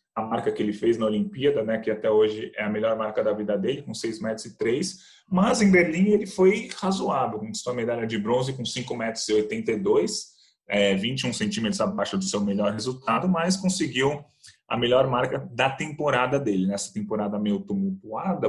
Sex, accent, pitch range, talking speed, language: male, Brazilian, 110-170 Hz, 180 wpm, Portuguese